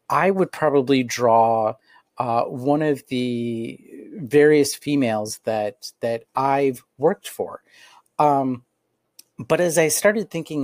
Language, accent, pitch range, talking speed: English, American, 120-155 Hz, 120 wpm